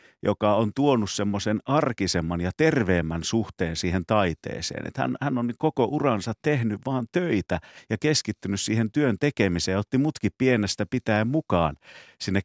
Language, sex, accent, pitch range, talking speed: Finnish, male, native, 90-120 Hz, 150 wpm